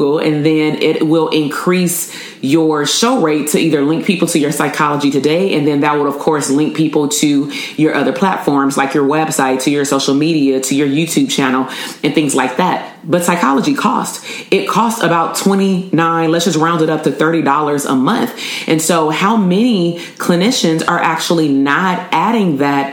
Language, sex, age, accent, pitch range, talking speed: English, female, 30-49, American, 140-170 Hz, 185 wpm